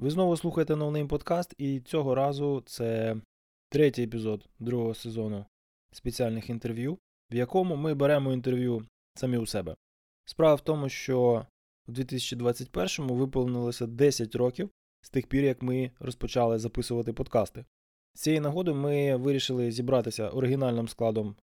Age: 20-39